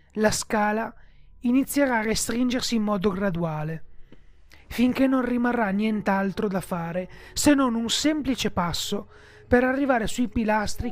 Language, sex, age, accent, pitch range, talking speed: Italian, male, 30-49, native, 170-245 Hz, 125 wpm